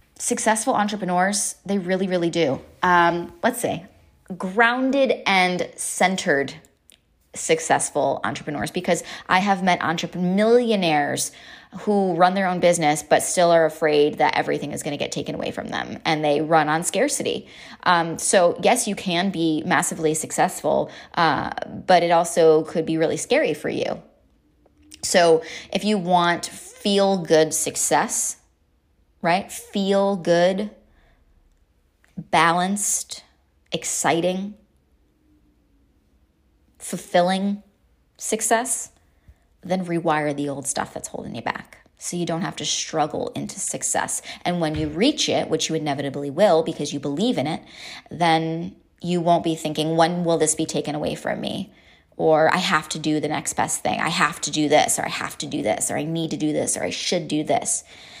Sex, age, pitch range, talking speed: female, 20-39, 150-185 Hz, 155 wpm